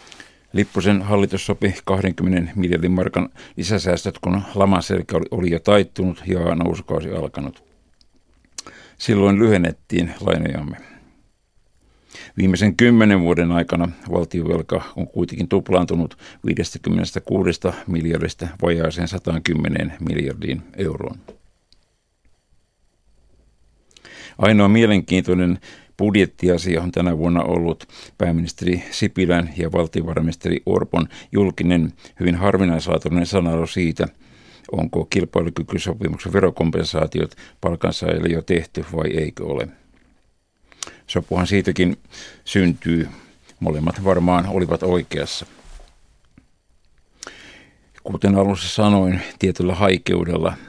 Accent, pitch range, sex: native, 85-95 Hz, male